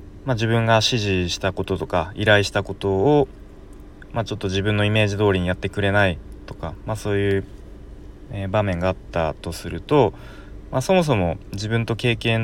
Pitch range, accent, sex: 90-115 Hz, native, male